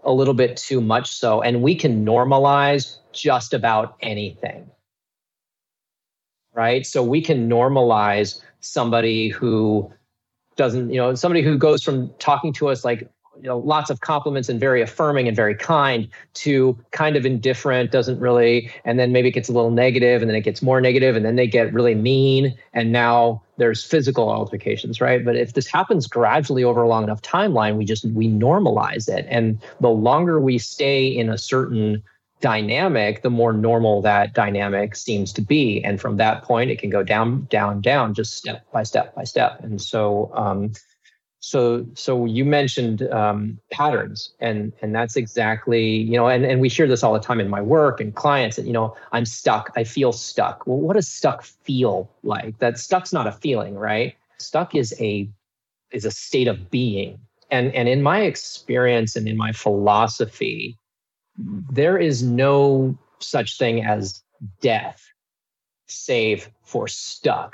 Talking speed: 175 wpm